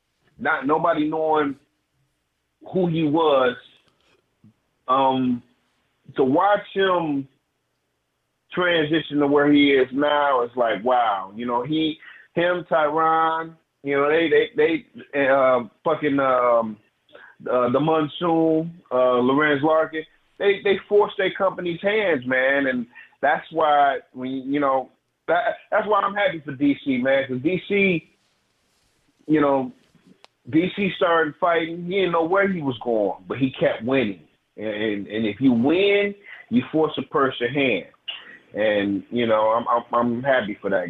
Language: English